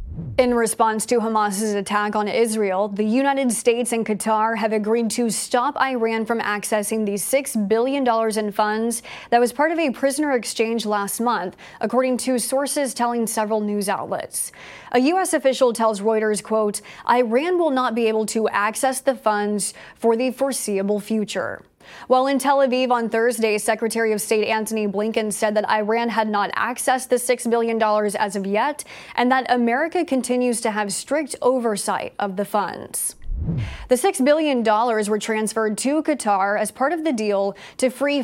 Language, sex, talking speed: English, female, 170 wpm